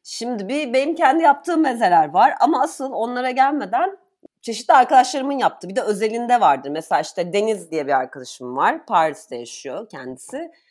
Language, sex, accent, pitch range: Turkish, female, native, 175-255 Hz